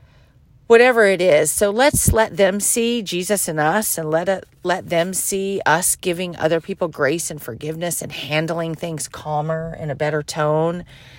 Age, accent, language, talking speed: 40-59, American, English, 170 wpm